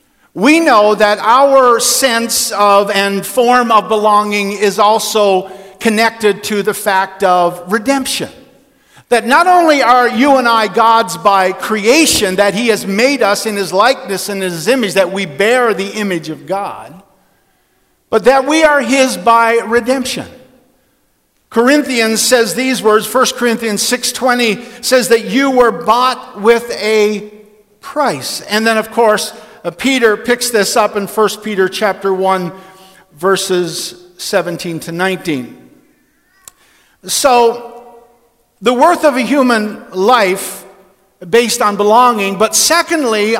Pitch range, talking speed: 200-245 Hz, 135 wpm